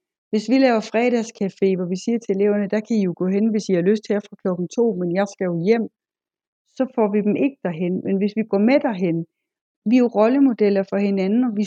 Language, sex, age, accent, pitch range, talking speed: Danish, female, 60-79, native, 190-235 Hz, 245 wpm